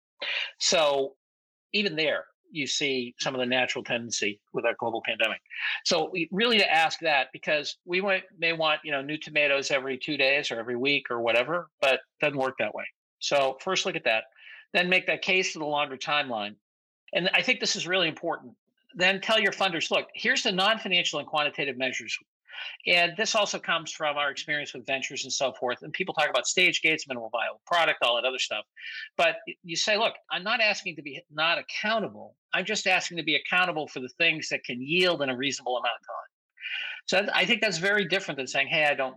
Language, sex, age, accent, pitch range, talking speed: English, male, 50-69, American, 130-180 Hz, 210 wpm